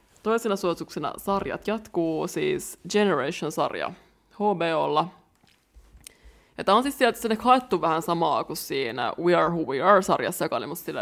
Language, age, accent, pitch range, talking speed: Finnish, 20-39, native, 170-205 Hz, 150 wpm